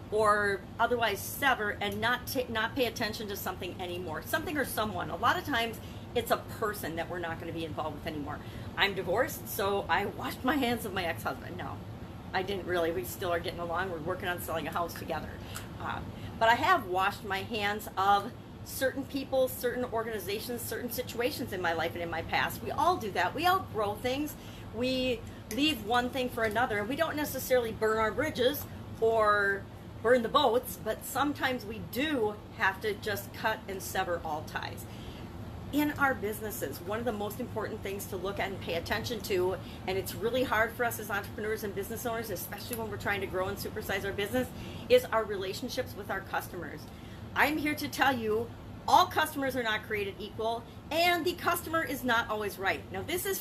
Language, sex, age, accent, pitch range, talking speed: English, female, 40-59, American, 195-255 Hz, 200 wpm